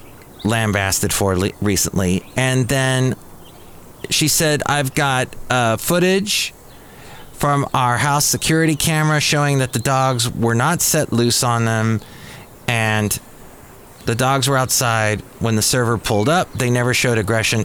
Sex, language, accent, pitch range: male, English, American, 115-150 Hz